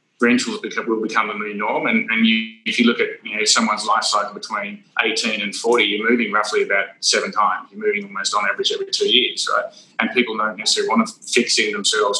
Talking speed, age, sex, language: 235 wpm, 20-39, male, English